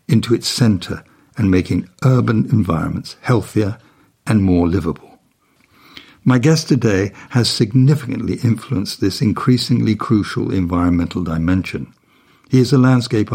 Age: 60-79